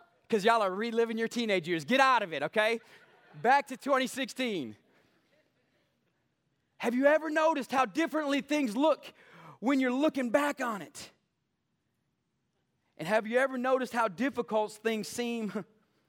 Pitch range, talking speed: 215-310 Hz, 140 wpm